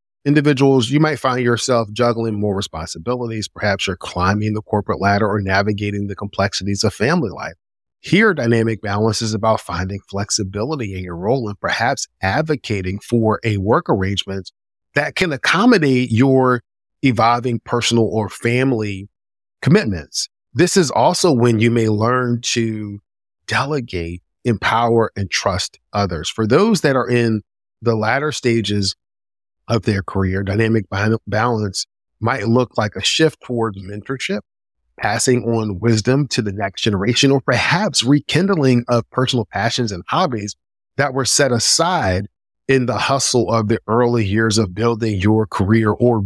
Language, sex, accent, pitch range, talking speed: English, male, American, 100-125 Hz, 145 wpm